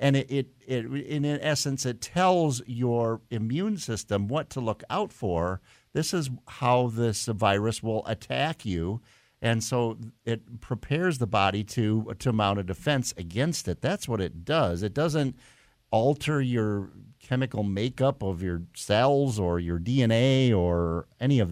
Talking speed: 160 wpm